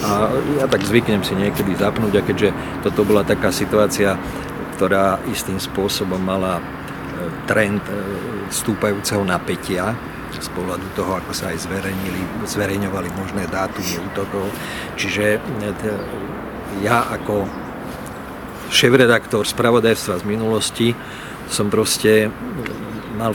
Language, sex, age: Slovak, male, 50-69